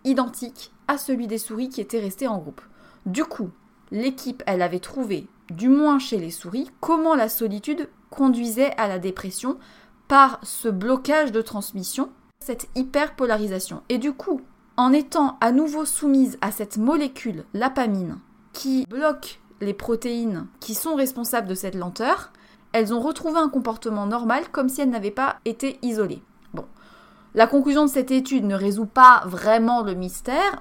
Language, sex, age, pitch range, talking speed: French, female, 20-39, 210-265 Hz, 160 wpm